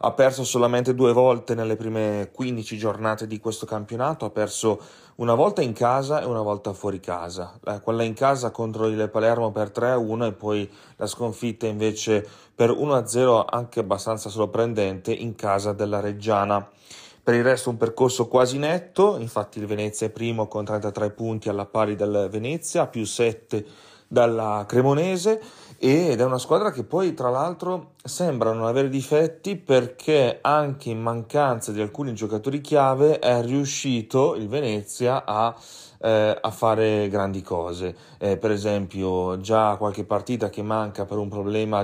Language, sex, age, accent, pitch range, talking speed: Italian, male, 30-49, native, 105-125 Hz, 160 wpm